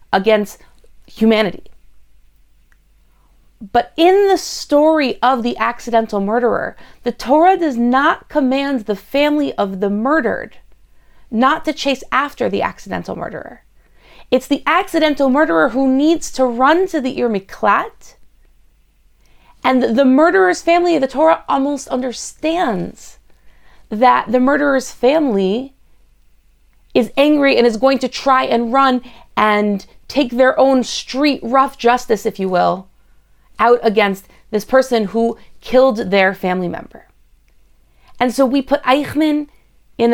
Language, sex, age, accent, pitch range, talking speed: English, female, 30-49, American, 225-285 Hz, 125 wpm